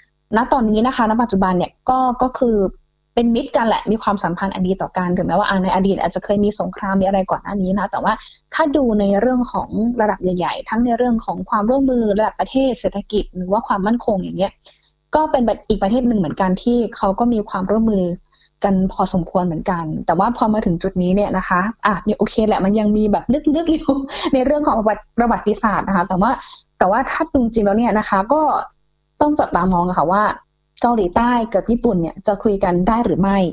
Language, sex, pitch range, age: Thai, female, 190-240 Hz, 20-39